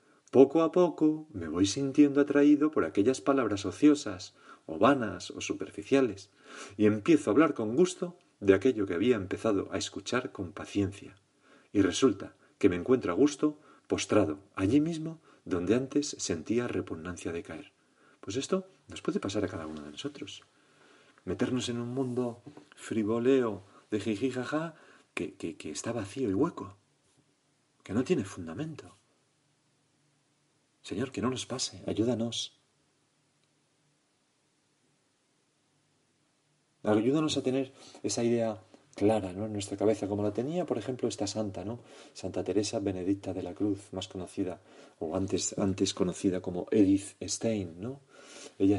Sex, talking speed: male, 140 wpm